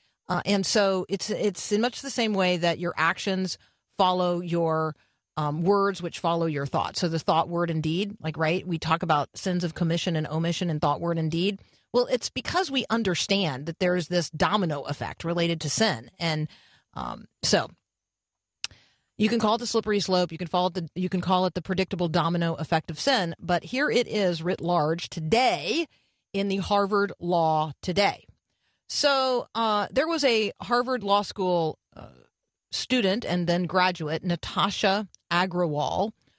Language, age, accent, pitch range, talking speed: English, 40-59, American, 170-225 Hz, 175 wpm